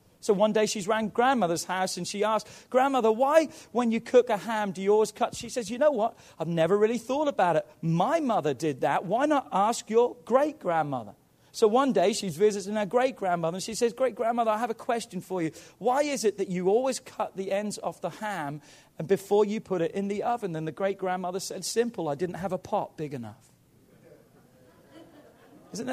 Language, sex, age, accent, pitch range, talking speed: English, male, 40-59, British, 150-210 Hz, 210 wpm